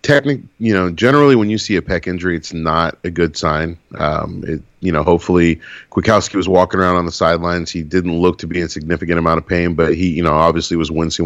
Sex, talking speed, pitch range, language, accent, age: male, 235 wpm, 85-95 Hz, English, American, 30-49